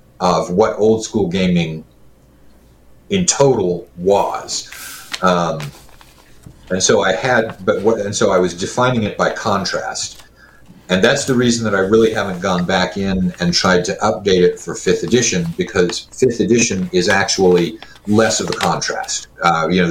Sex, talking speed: male, 165 wpm